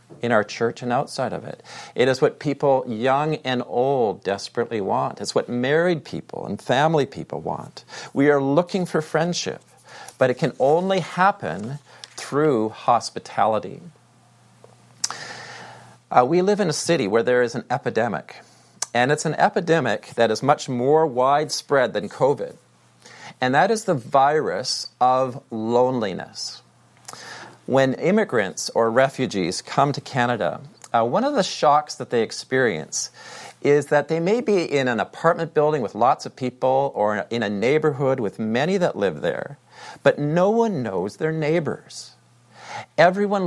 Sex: male